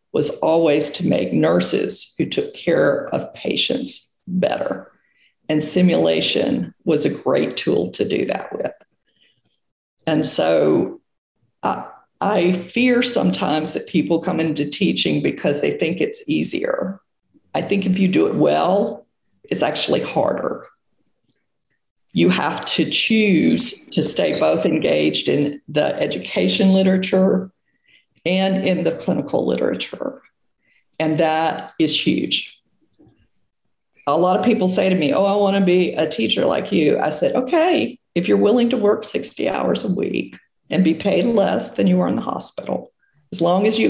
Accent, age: American, 50-69